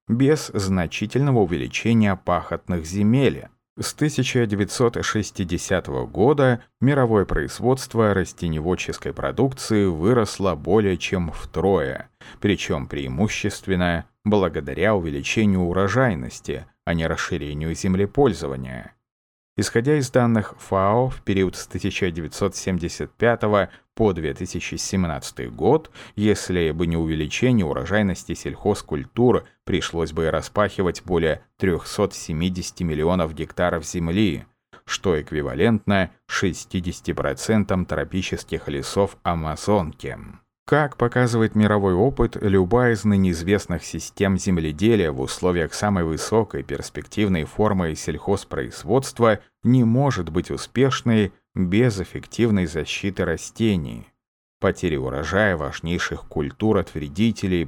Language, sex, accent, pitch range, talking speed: Russian, male, native, 85-110 Hz, 90 wpm